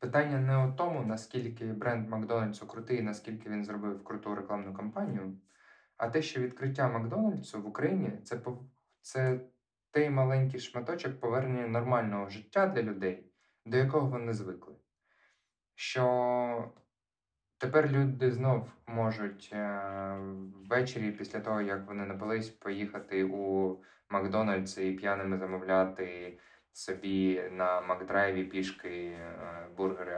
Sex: male